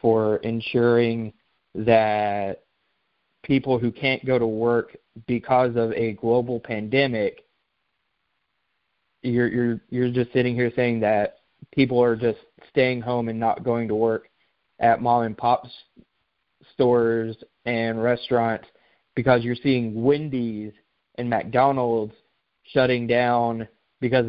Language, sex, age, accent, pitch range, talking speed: English, male, 20-39, American, 115-130 Hz, 115 wpm